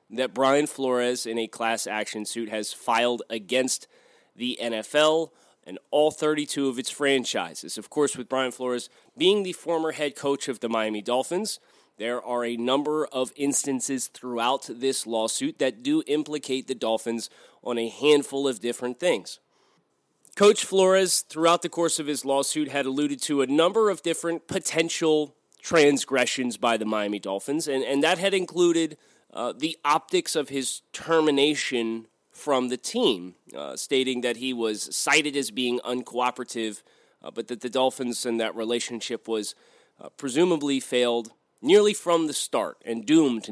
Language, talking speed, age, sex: English, 160 wpm, 30-49, male